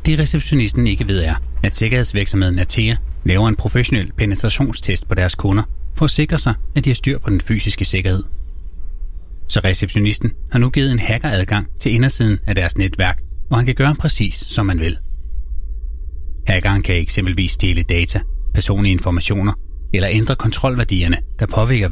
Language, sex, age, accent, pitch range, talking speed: Danish, male, 30-49, native, 90-120 Hz, 160 wpm